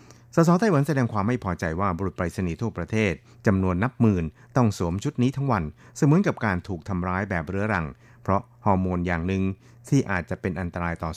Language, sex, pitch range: Thai, male, 90-120 Hz